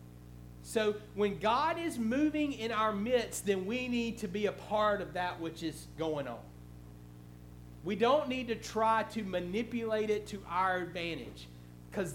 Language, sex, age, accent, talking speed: English, male, 40-59, American, 165 wpm